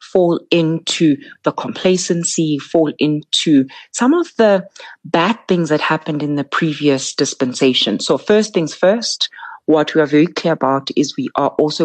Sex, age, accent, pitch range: female, 30-49, South African, 145-180 Hz